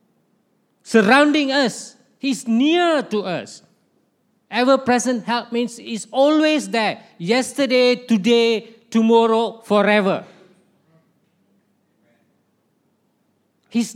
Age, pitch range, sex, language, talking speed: 50-69, 205-265 Hz, male, English, 75 wpm